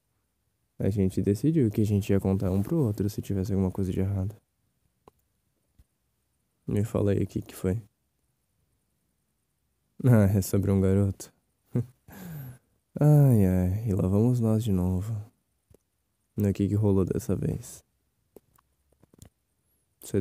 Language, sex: Portuguese, male